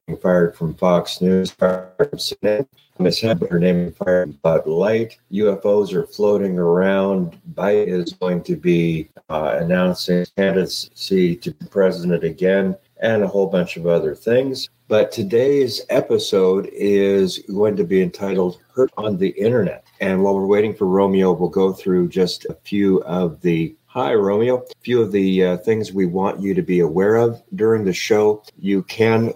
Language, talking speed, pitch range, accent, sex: English, 170 wpm, 90-110 Hz, American, male